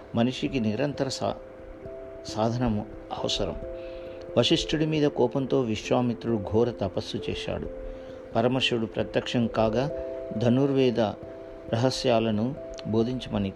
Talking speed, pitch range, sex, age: 75 wpm, 100-130 Hz, male, 50-69